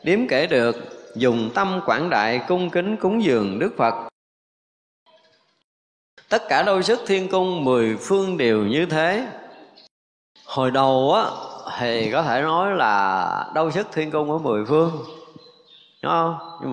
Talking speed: 145 wpm